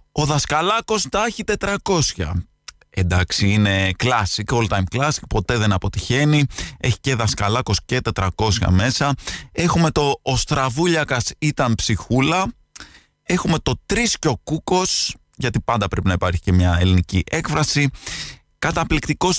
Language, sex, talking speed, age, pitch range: Greek, male, 125 wpm, 20-39, 105-145 Hz